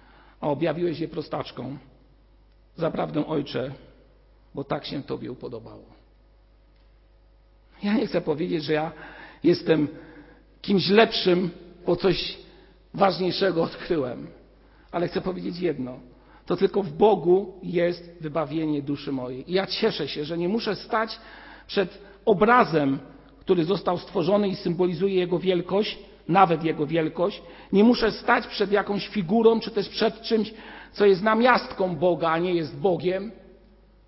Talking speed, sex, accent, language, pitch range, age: 130 wpm, male, native, Polish, 165-205 Hz, 50-69